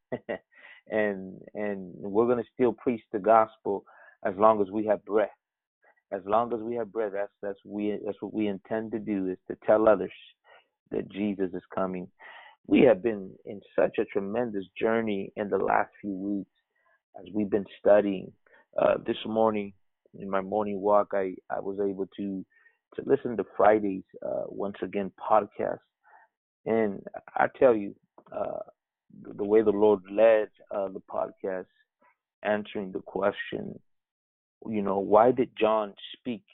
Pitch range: 100-110 Hz